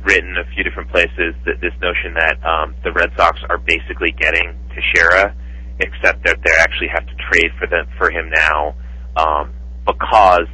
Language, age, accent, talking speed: English, 30-49, American, 175 wpm